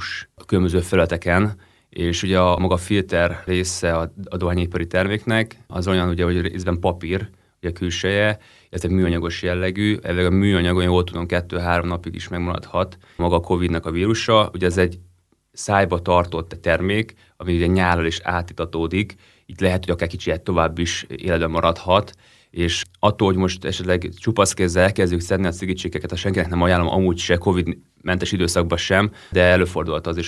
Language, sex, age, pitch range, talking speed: Hungarian, male, 30-49, 85-95 Hz, 165 wpm